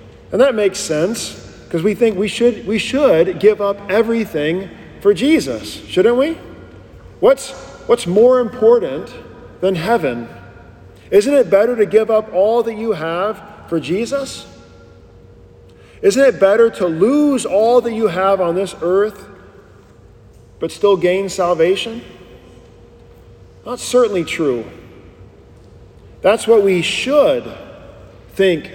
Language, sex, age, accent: English, male, 40-59, American